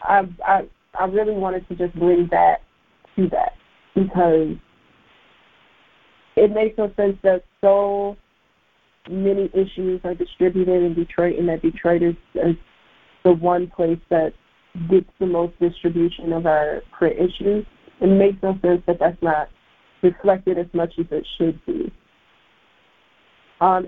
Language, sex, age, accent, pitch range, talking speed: English, female, 30-49, American, 170-195 Hz, 140 wpm